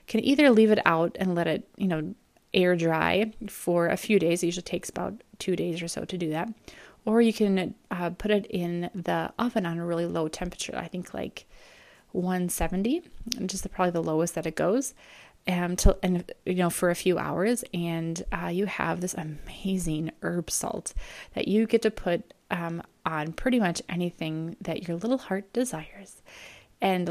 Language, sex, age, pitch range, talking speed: English, female, 20-39, 165-200 Hz, 195 wpm